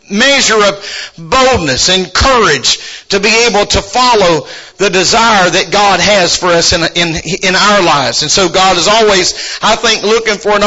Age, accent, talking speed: 50-69, American, 180 wpm